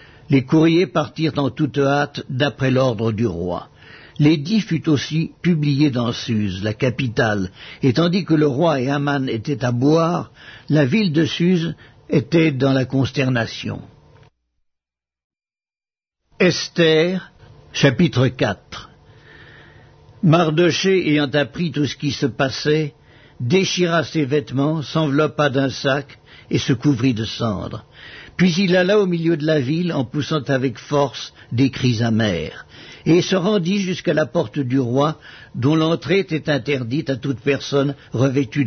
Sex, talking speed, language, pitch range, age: male, 140 wpm, English, 130-160 Hz, 60-79